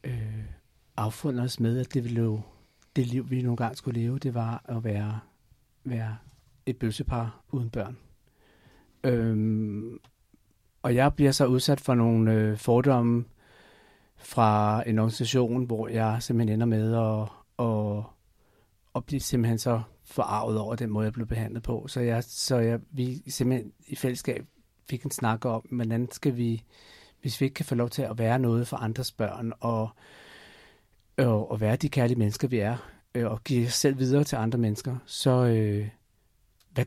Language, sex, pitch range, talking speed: Danish, male, 110-130 Hz, 165 wpm